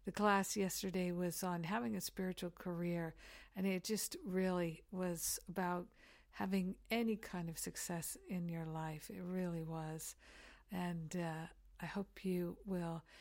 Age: 60-79